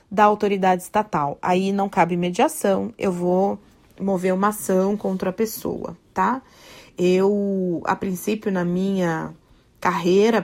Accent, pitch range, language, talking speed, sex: Brazilian, 180-225 Hz, Portuguese, 125 wpm, female